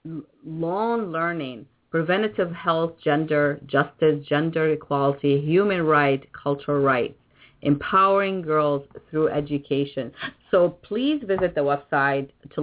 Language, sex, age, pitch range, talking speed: English, female, 40-59, 135-165 Hz, 105 wpm